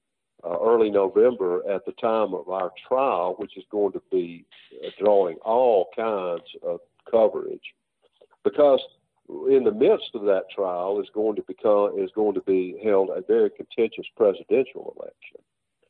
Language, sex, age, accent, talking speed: English, male, 50-69, American, 150 wpm